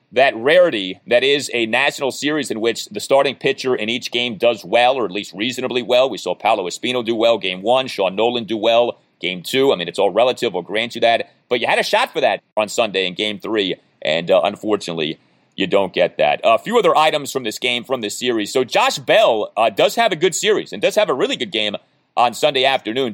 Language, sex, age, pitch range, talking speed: English, male, 30-49, 115-145 Hz, 240 wpm